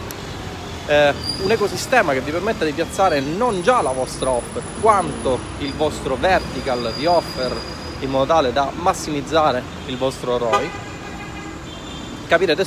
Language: Italian